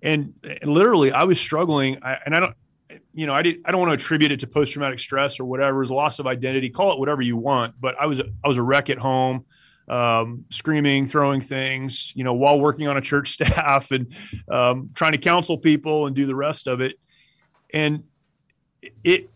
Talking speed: 220 wpm